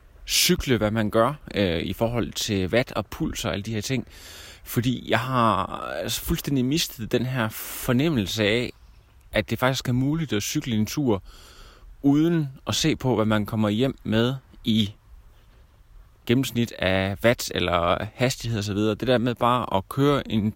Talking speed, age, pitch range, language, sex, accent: 175 wpm, 30-49, 100-125 Hz, Danish, male, native